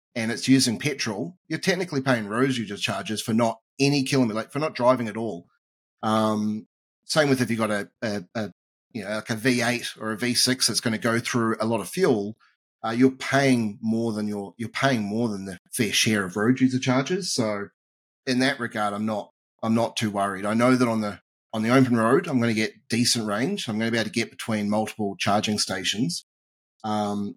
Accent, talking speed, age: Australian, 220 wpm, 30-49